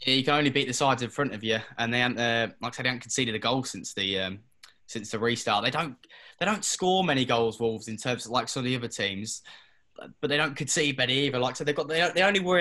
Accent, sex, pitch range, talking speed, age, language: British, male, 110-130 Hz, 290 wpm, 10-29, English